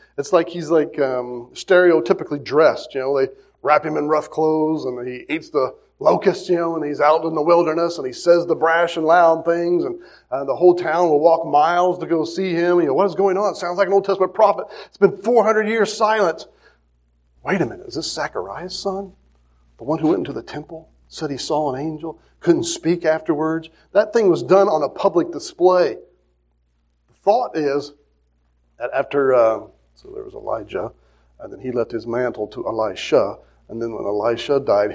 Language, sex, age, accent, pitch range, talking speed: English, male, 40-59, American, 130-185 Hz, 205 wpm